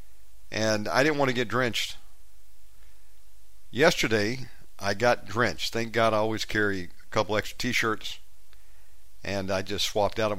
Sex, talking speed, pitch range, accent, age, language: male, 150 wpm, 95-115 Hz, American, 50-69, English